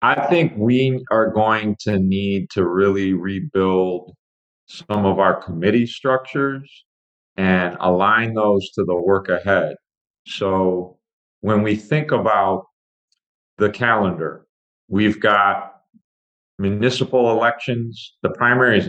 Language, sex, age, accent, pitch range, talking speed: English, male, 40-59, American, 95-115 Hz, 115 wpm